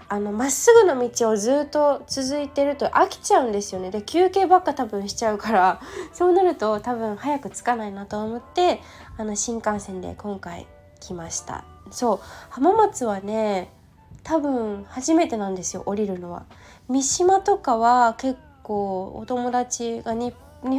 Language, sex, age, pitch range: Japanese, female, 20-39, 195-270 Hz